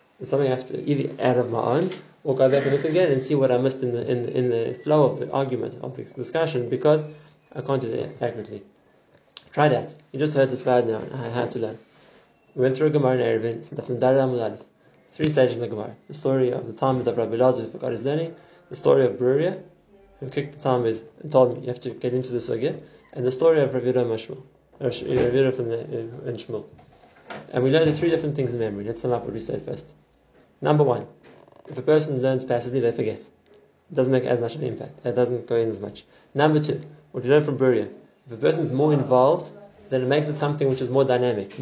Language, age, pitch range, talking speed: English, 20-39, 125-150 Hz, 230 wpm